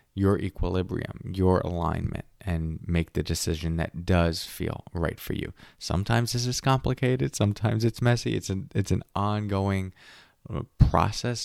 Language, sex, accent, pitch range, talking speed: English, male, American, 85-110 Hz, 140 wpm